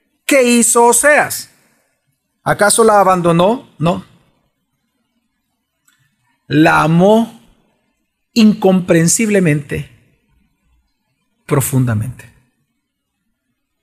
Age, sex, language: 40-59, male, Spanish